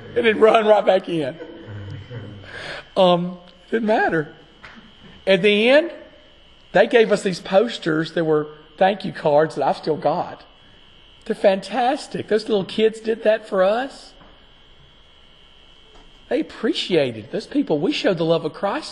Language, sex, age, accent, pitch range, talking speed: English, male, 40-59, American, 150-215 Hz, 145 wpm